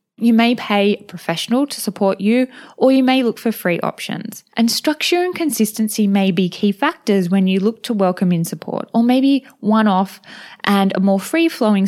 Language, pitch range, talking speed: English, 185-240 Hz, 185 wpm